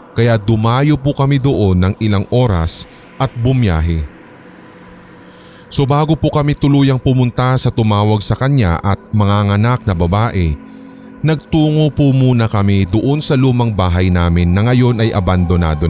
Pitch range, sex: 100-130 Hz, male